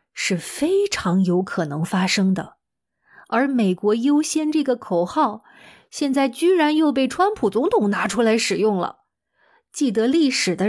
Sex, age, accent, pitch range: female, 20-39, native, 190-270 Hz